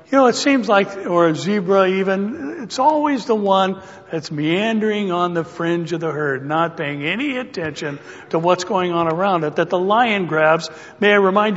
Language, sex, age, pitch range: English, male, 60-79, 160-200 Hz